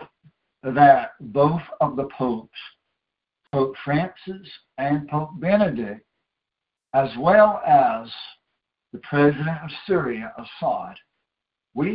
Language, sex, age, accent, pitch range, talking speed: English, male, 60-79, American, 120-145 Hz, 95 wpm